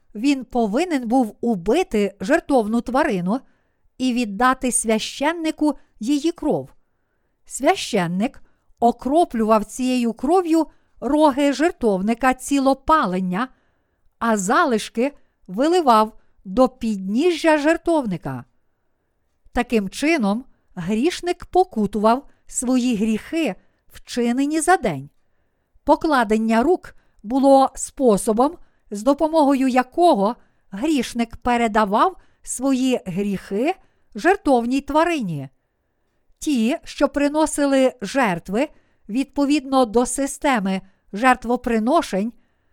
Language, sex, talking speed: Ukrainian, female, 75 wpm